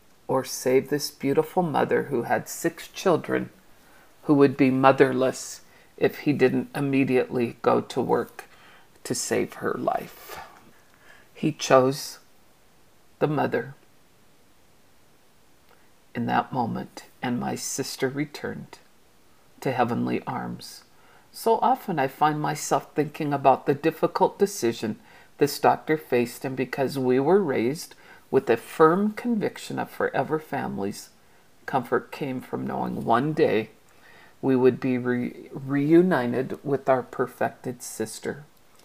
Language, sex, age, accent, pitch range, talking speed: English, female, 50-69, American, 130-160 Hz, 120 wpm